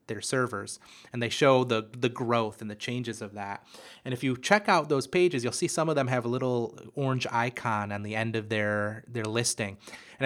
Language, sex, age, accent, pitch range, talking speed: English, male, 30-49, American, 110-130 Hz, 220 wpm